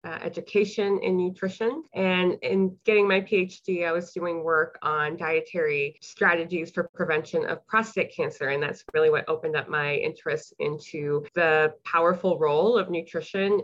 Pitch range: 165-220 Hz